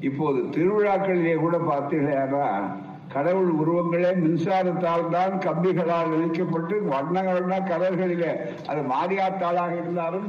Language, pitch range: Tamil, 165-195 Hz